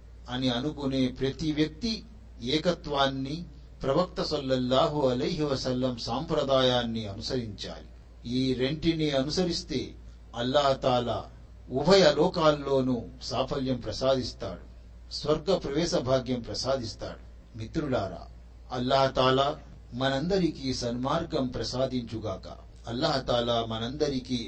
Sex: male